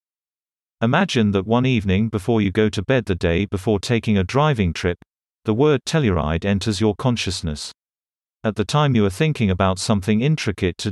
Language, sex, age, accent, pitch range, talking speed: English, male, 40-59, British, 100-120 Hz, 175 wpm